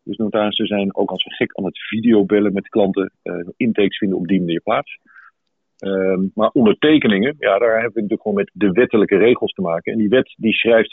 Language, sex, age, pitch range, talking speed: English, male, 50-69, 100-115 Hz, 215 wpm